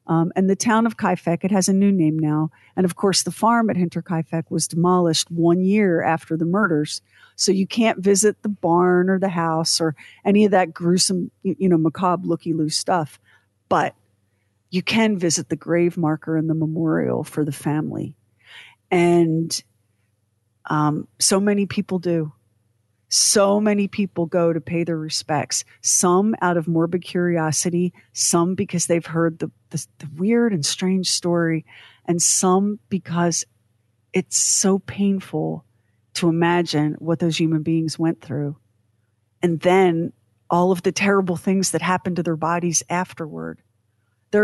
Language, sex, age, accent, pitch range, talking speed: English, female, 50-69, American, 150-185 Hz, 160 wpm